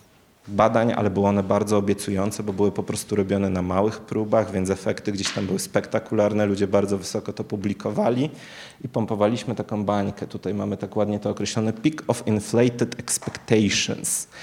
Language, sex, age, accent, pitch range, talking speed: Polish, male, 30-49, native, 105-125 Hz, 160 wpm